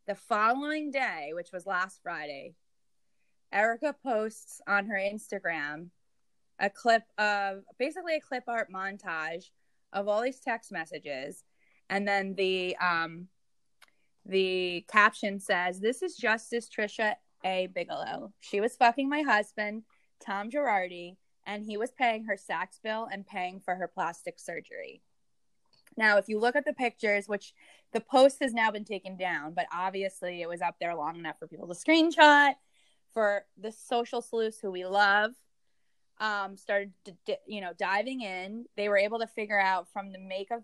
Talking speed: 160 wpm